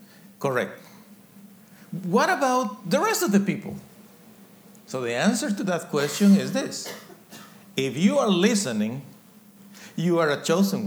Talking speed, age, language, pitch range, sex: 130 wpm, 50-69, English, 180-210 Hz, male